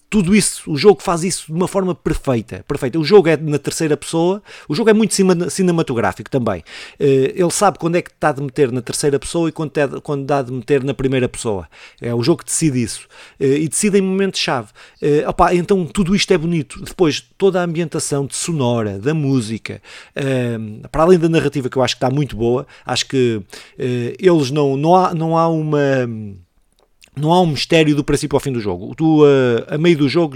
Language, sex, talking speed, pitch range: Portuguese, male, 205 wpm, 130-170 Hz